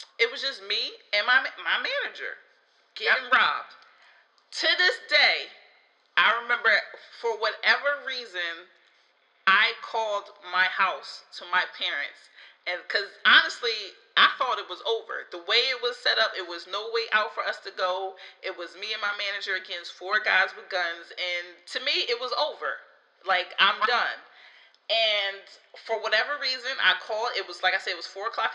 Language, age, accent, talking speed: English, 30-49, American, 170 wpm